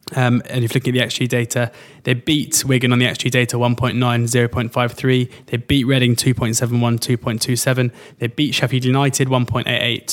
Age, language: 20-39, English